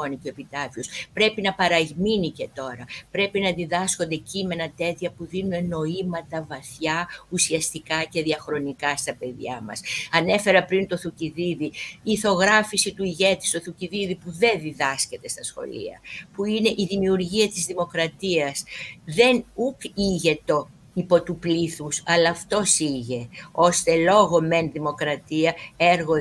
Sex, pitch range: female, 155-185 Hz